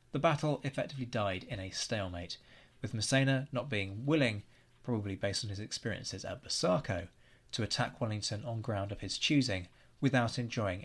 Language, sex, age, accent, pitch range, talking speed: English, male, 30-49, British, 105-130 Hz, 160 wpm